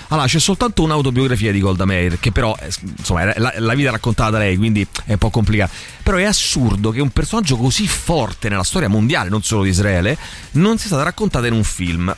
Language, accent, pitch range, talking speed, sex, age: Italian, native, 105-150 Hz, 210 wpm, male, 30-49